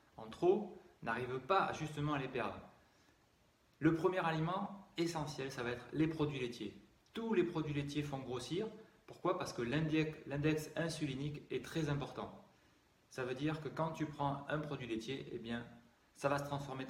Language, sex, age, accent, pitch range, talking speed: French, male, 30-49, French, 120-150 Hz, 175 wpm